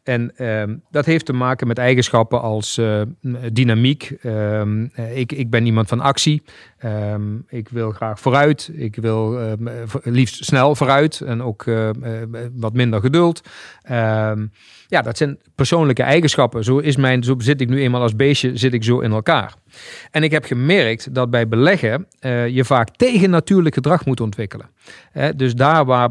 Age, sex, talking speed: 40-59, male, 175 wpm